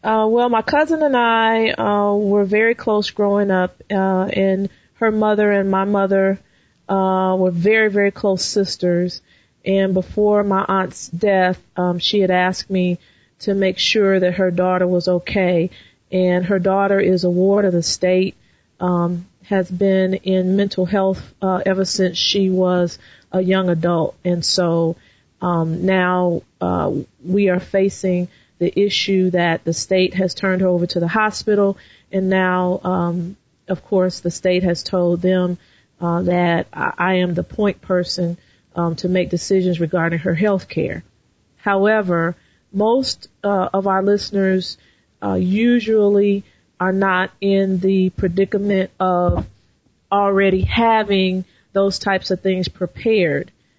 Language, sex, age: English, female, 40-59